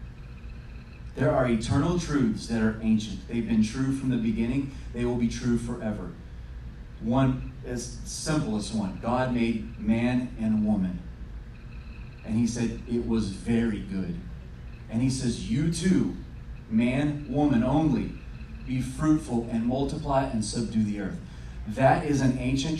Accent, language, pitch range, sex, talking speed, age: American, English, 110-130 Hz, male, 145 wpm, 30-49